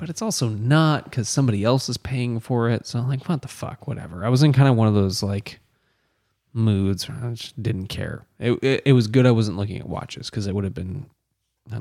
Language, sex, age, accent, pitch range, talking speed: English, male, 20-39, American, 100-130 Hz, 245 wpm